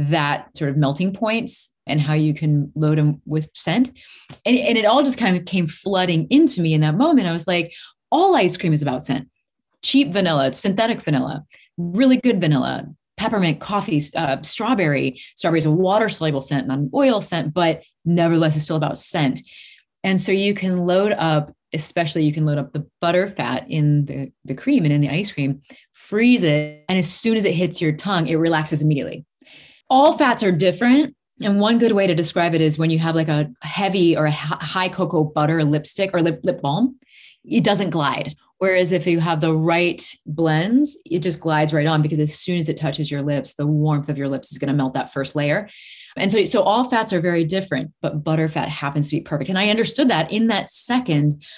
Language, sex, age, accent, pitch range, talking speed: English, female, 20-39, American, 150-190 Hz, 215 wpm